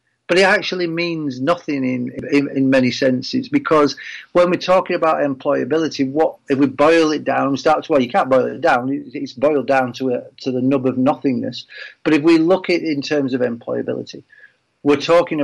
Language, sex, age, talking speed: English, male, 40-59, 200 wpm